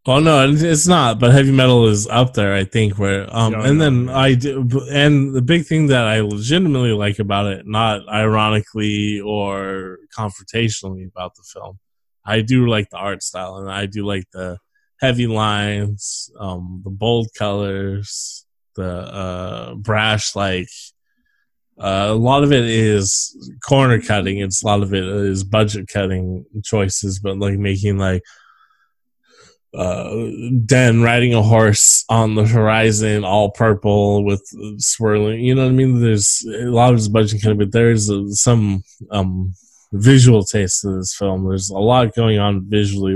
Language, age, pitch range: English, 20-39, 100-120 Hz